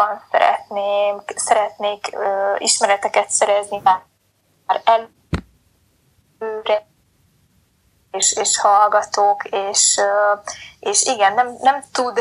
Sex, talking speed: female, 90 wpm